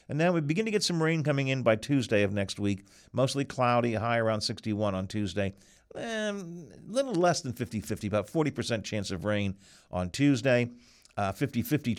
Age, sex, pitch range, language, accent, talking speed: 50-69, male, 105-130 Hz, English, American, 185 wpm